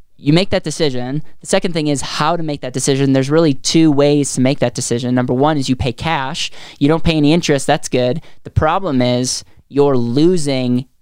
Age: 20-39